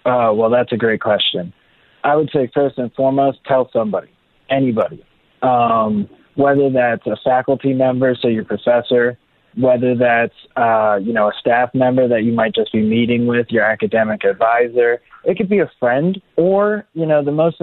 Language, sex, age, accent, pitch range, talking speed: English, male, 20-39, American, 120-140 Hz, 175 wpm